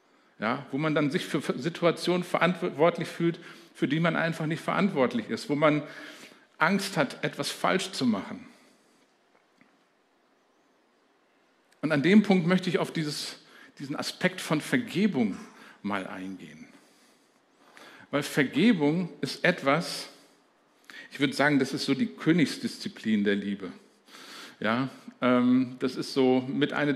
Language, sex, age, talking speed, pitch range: German, male, 50-69, 120 wpm, 140-200 Hz